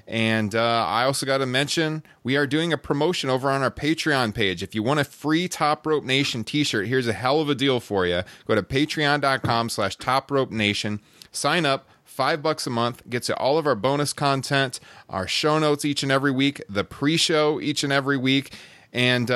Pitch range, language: 115-150 Hz, English